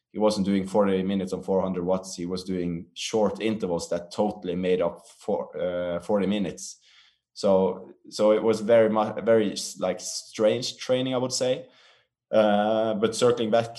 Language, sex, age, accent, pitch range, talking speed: English, male, 20-39, Norwegian, 95-110 Hz, 165 wpm